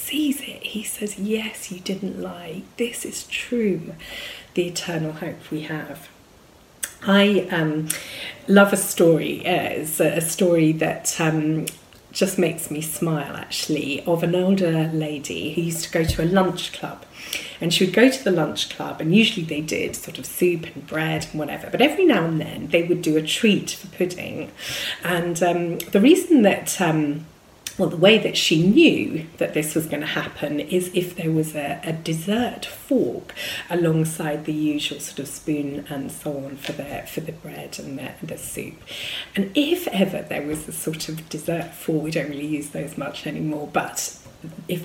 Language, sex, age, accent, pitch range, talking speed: English, female, 30-49, British, 155-195 Hz, 185 wpm